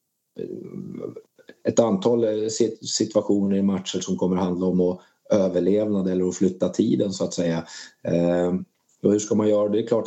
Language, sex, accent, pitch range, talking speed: Swedish, male, native, 95-105 Hz, 165 wpm